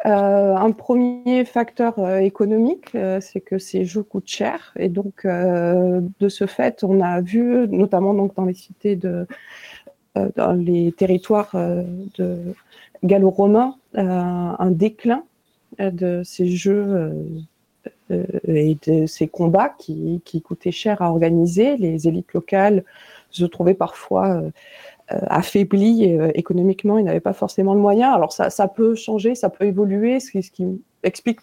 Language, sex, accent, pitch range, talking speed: French, female, French, 180-210 Hz, 145 wpm